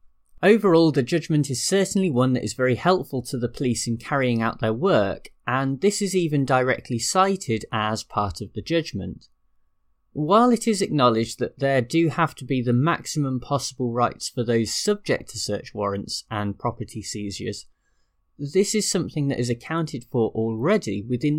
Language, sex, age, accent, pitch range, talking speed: English, male, 20-39, British, 110-160 Hz, 170 wpm